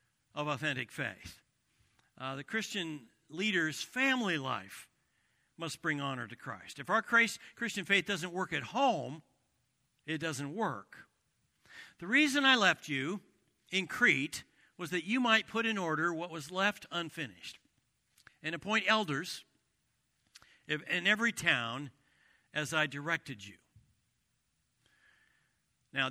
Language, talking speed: English, 125 wpm